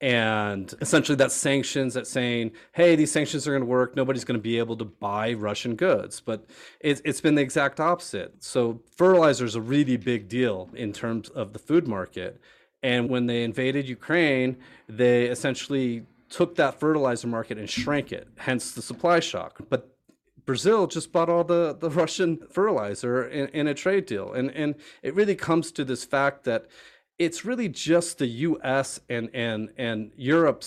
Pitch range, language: 120-155 Hz, English